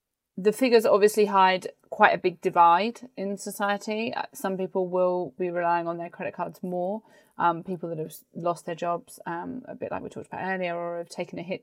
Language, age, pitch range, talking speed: English, 30-49, 175-195 Hz, 205 wpm